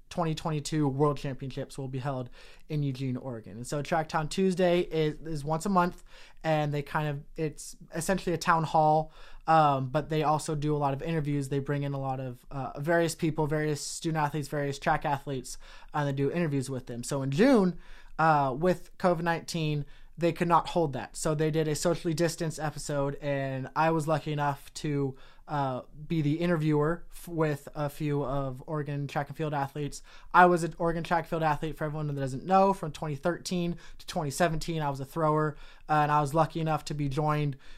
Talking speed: 200 wpm